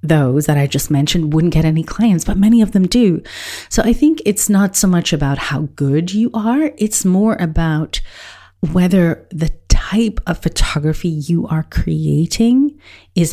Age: 30-49